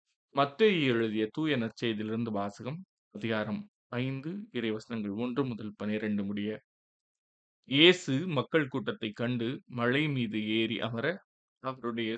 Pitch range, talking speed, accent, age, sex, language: 110-130 Hz, 105 wpm, native, 20-39, male, Tamil